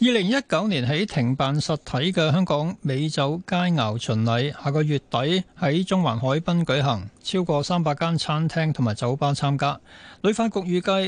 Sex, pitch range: male, 130-175 Hz